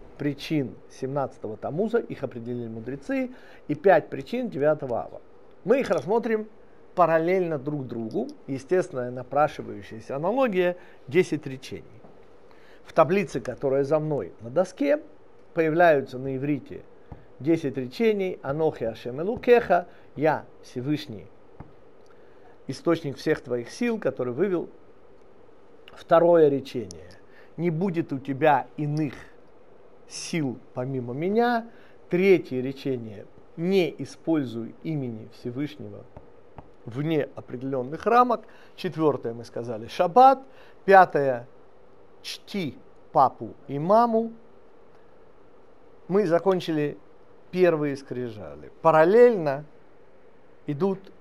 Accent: native